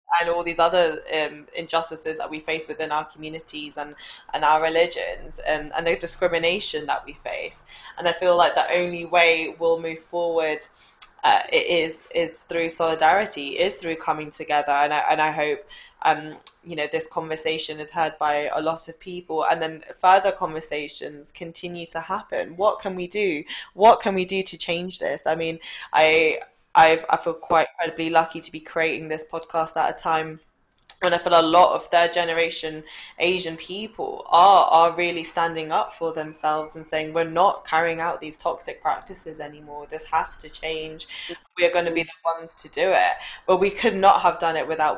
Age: 10-29